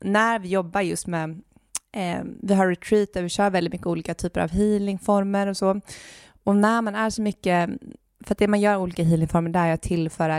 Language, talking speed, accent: Swedish, 215 wpm, native